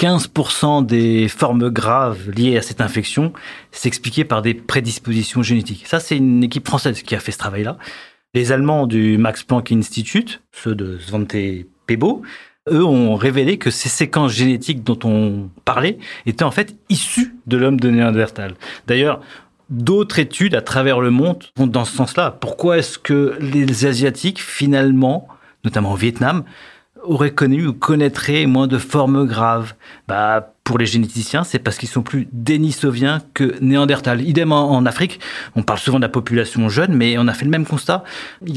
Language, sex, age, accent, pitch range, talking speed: French, male, 40-59, French, 115-150 Hz, 170 wpm